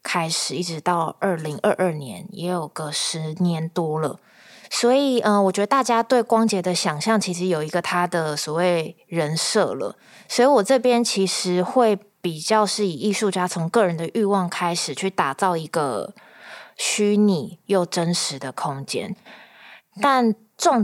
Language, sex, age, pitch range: Chinese, female, 20-39, 165-215 Hz